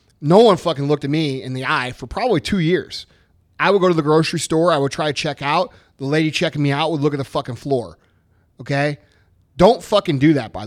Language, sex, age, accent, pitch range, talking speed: English, male, 30-49, American, 130-170 Hz, 240 wpm